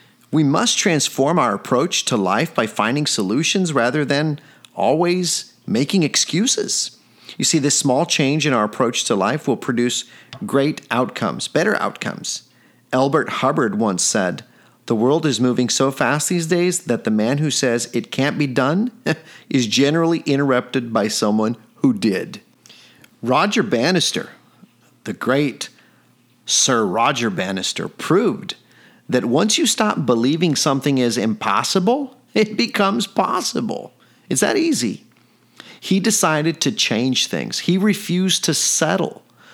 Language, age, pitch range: English, 40-59, 135-195 Hz